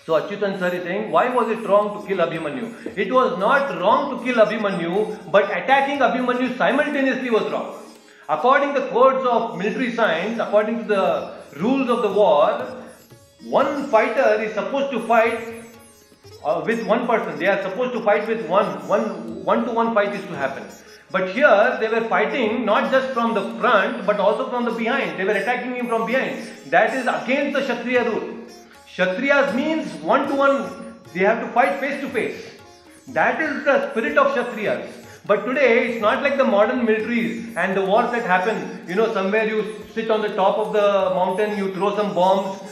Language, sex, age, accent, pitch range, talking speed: English, male, 40-59, Indian, 200-255 Hz, 190 wpm